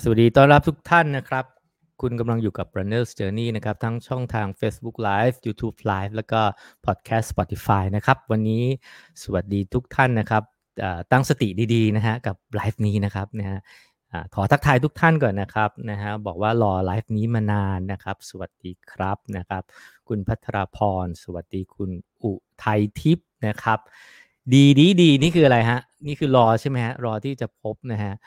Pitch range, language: 100-130 Hz, English